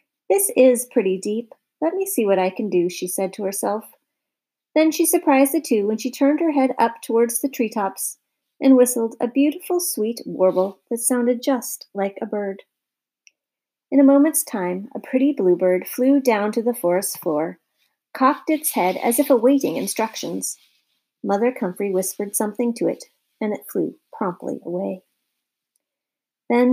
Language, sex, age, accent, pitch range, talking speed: English, female, 40-59, American, 205-280 Hz, 165 wpm